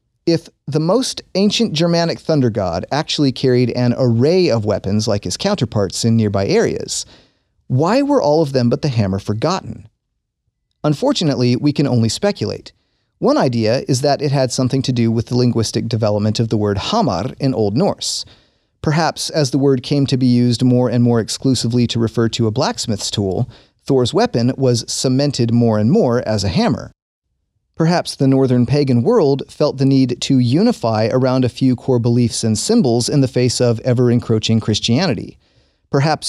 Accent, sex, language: American, male, English